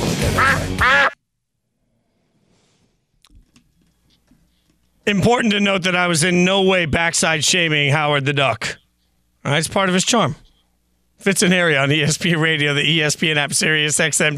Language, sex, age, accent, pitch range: English, male, 40-59, American, 155-205 Hz